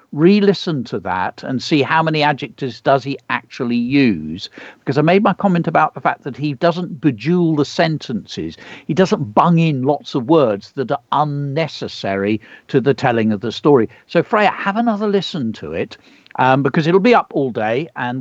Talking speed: 190 wpm